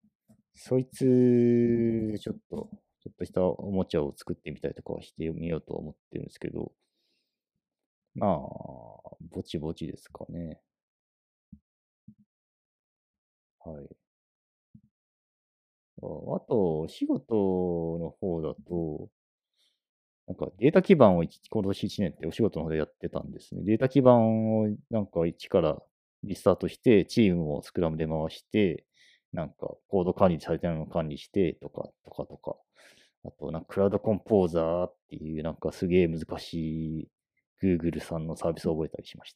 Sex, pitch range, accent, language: male, 85-130 Hz, native, Japanese